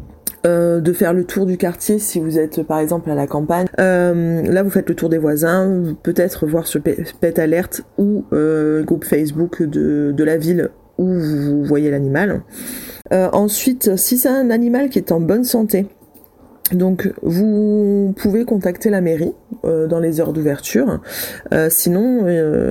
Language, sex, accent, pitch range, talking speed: French, female, French, 160-195 Hz, 170 wpm